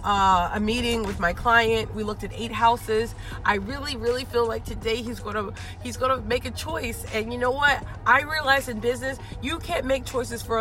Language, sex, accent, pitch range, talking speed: English, female, American, 220-275 Hz, 210 wpm